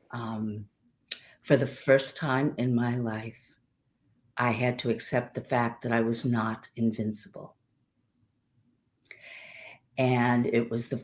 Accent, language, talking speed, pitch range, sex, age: American, English, 125 wpm, 115-140 Hz, female, 50-69